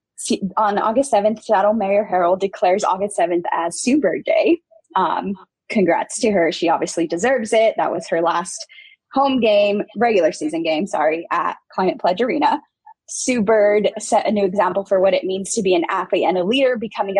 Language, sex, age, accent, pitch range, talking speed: English, female, 10-29, American, 185-235 Hz, 180 wpm